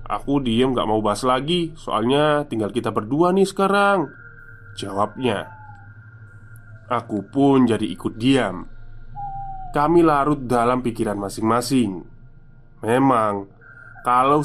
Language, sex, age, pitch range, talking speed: Indonesian, male, 20-39, 110-135 Hz, 105 wpm